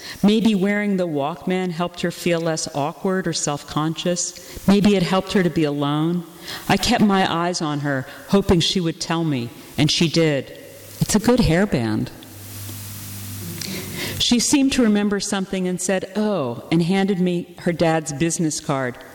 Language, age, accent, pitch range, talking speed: English, 50-69, American, 155-195 Hz, 160 wpm